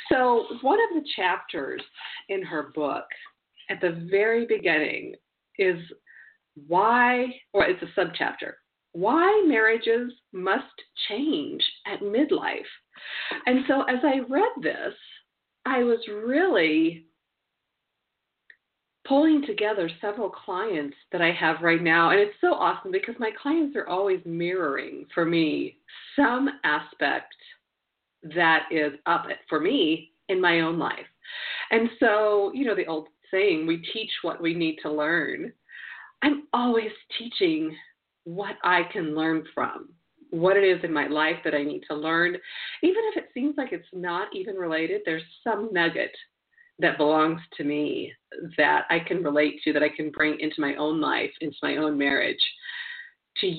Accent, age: American, 40-59